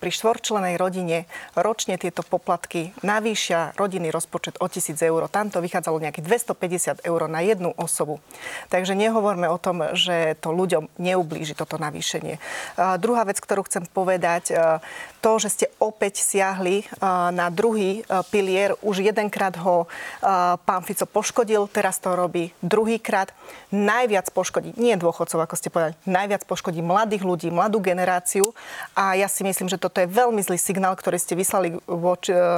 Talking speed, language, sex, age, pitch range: 160 wpm, Slovak, female, 30-49, 175-200 Hz